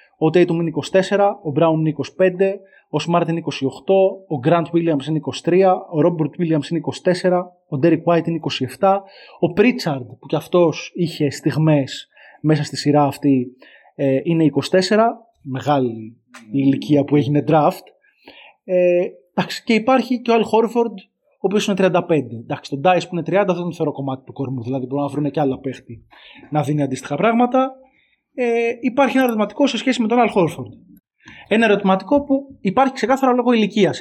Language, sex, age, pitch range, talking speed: Greek, male, 20-39, 145-200 Hz, 175 wpm